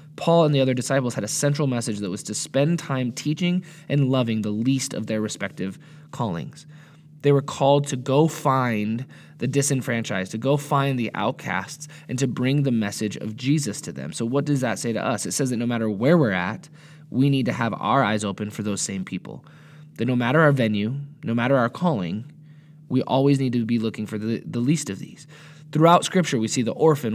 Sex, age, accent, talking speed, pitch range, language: male, 20-39, American, 215 wpm, 115-150 Hz, English